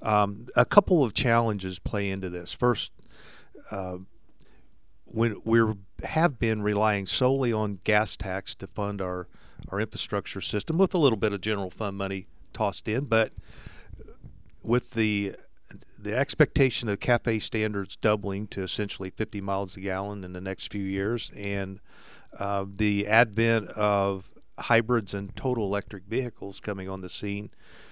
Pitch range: 100-115 Hz